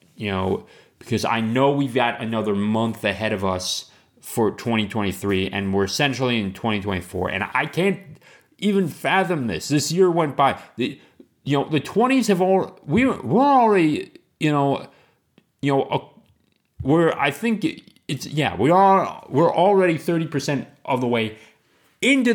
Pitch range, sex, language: 105-150 Hz, male, English